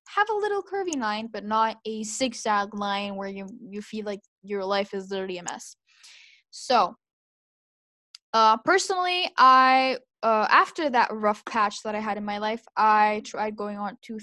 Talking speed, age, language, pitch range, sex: 175 wpm, 10-29, English, 220-270 Hz, female